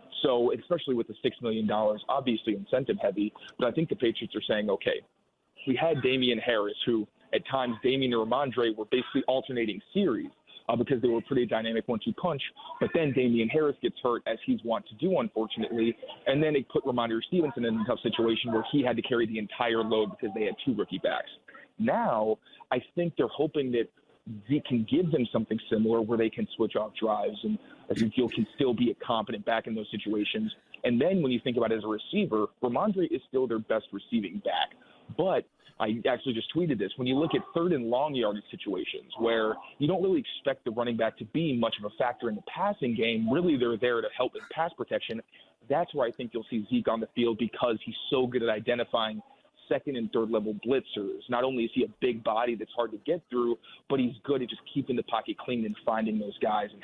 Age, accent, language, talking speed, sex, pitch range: 30-49, American, English, 220 wpm, male, 115-155 Hz